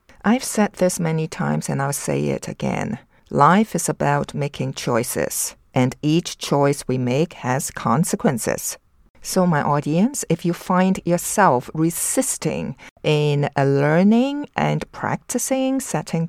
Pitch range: 145-195 Hz